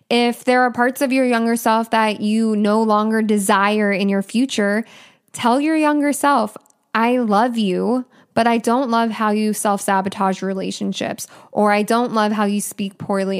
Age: 10-29